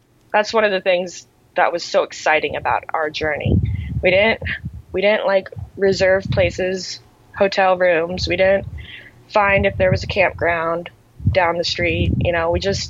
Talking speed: 165 wpm